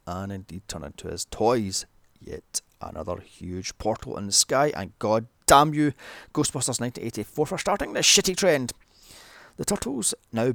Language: English